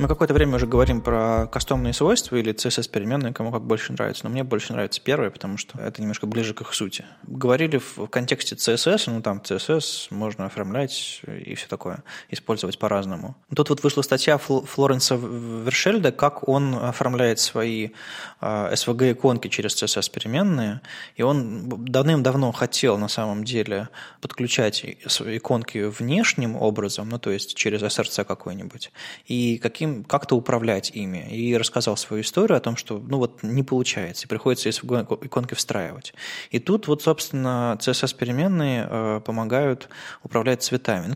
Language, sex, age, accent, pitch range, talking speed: Russian, male, 20-39, native, 110-140 Hz, 150 wpm